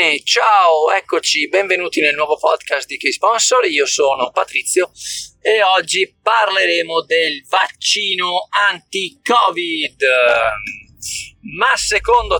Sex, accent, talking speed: male, native, 95 wpm